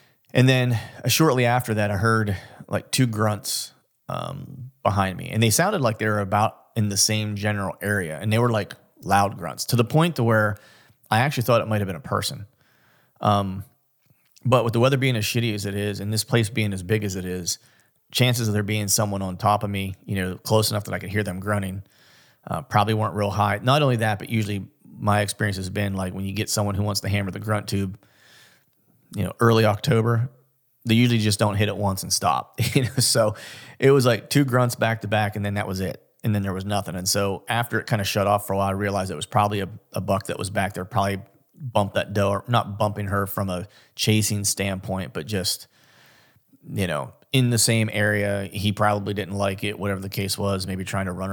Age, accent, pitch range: 30-49, American, 100-115 Hz